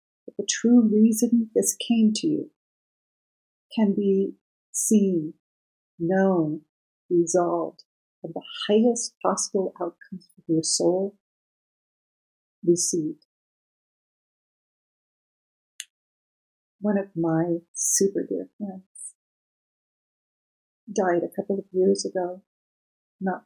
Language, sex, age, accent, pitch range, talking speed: English, female, 50-69, American, 175-215 Hz, 90 wpm